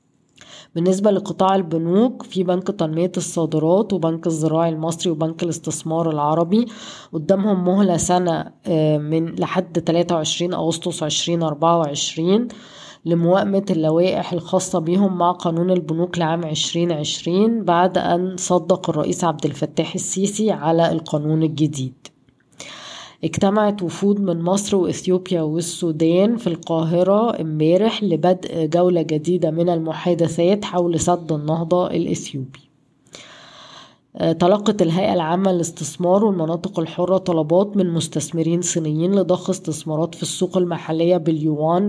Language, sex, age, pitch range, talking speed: Arabic, female, 20-39, 160-185 Hz, 105 wpm